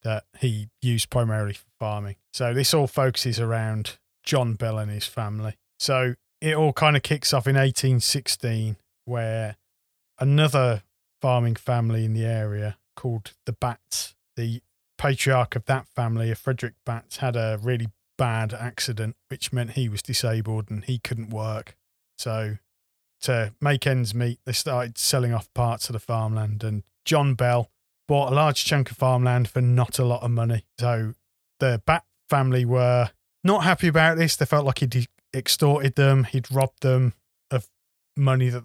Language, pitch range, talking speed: English, 110-130 Hz, 165 wpm